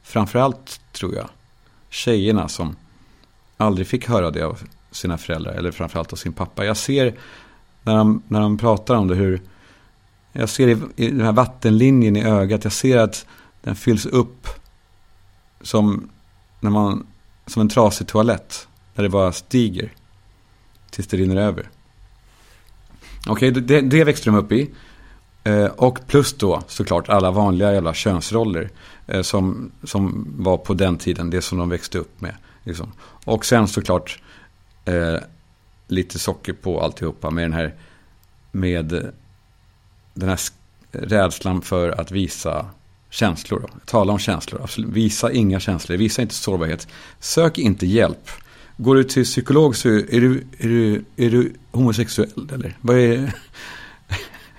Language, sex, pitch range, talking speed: Swedish, male, 90-115 Hz, 155 wpm